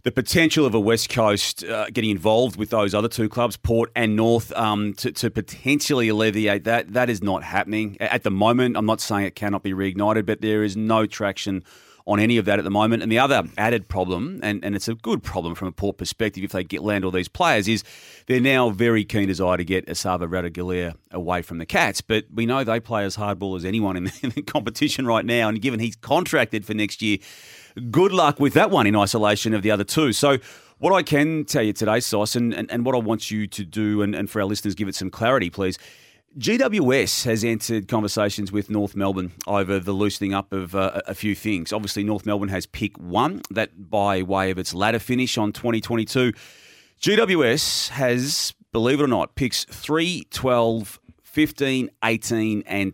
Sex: male